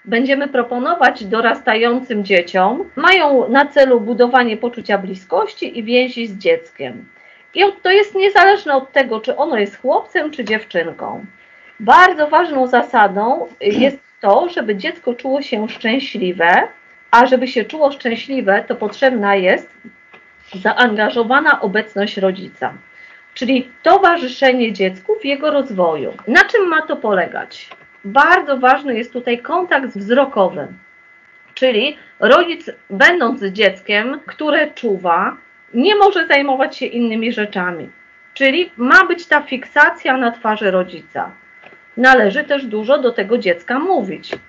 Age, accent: 40-59, native